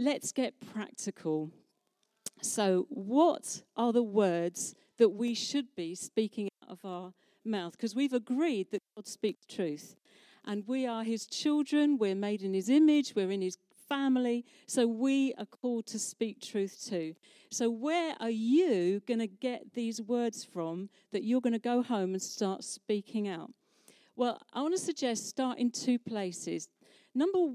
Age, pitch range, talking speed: 50-69, 205-275 Hz, 165 wpm